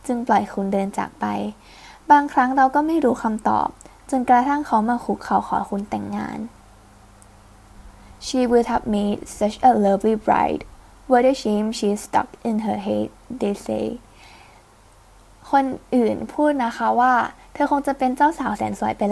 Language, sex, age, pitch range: Thai, female, 10-29, 205-265 Hz